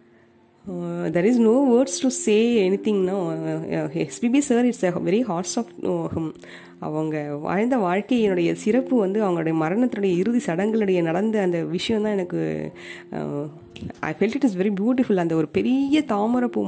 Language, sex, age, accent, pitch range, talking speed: Tamil, female, 20-39, native, 165-210 Hz, 160 wpm